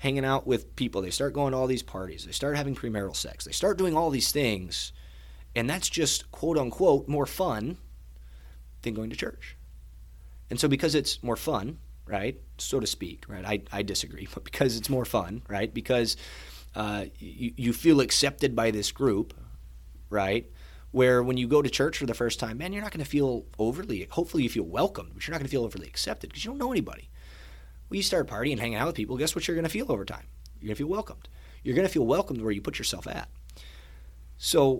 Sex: male